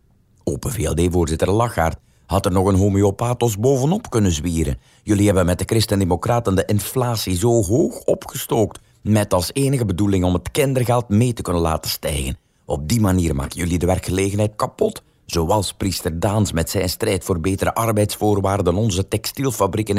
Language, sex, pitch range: Dutch, male, 85-115 Hz